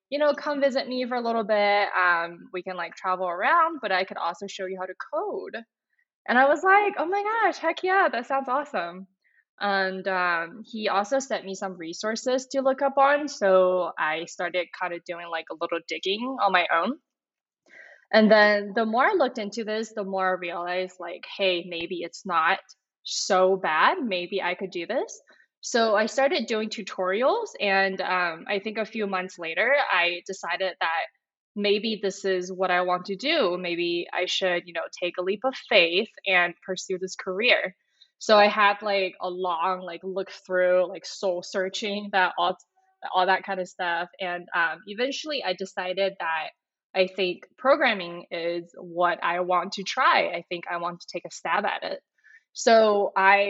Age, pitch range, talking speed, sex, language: 10-29, 180-235 Hz, 190 wpm, female, English